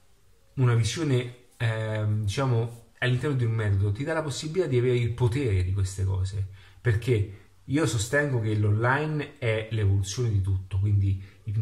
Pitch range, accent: 100-125 Hz, native